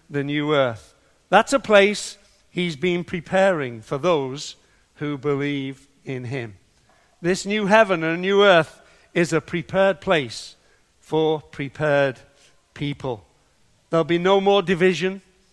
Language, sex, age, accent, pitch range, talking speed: English, male, 60-79, British, 150-195 Hz, 130 wpm